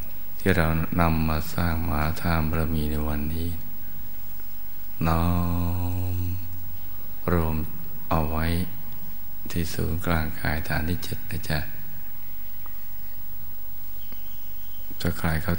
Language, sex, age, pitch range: Thai, male, 60-79, 80-85 Hz